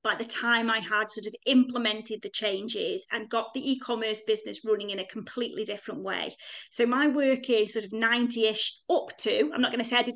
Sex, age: female, 30-49